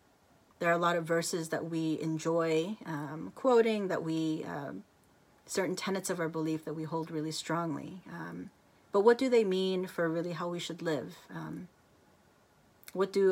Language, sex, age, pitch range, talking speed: English, female, 30-49, 155-185 Hz, 175 wpm